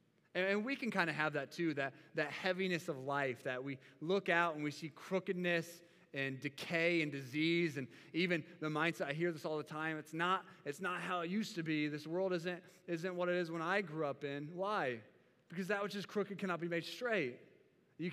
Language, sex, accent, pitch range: English, male, American, 145-180 Hz